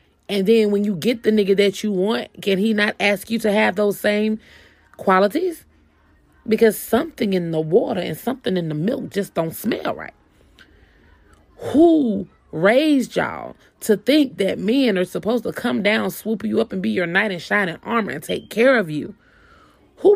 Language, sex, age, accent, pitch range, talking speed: English, female, 30-49, American, 170-240 Hz, 185 wpm